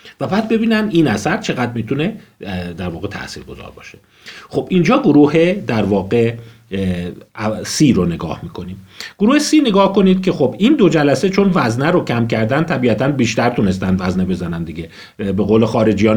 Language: Persian